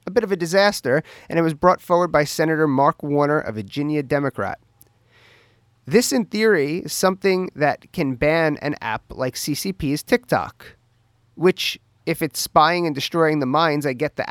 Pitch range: 120-165 Hz